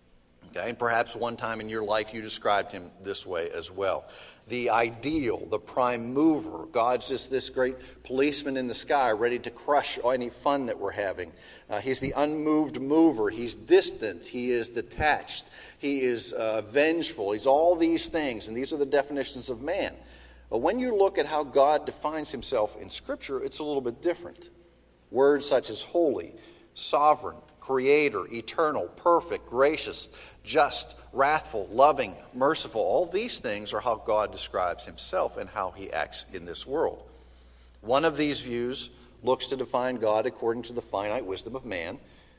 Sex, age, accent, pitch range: male, 40-59, American, 110-145 Hz